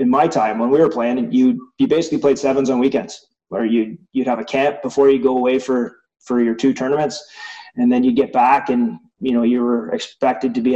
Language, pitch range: English, 120-140 Hz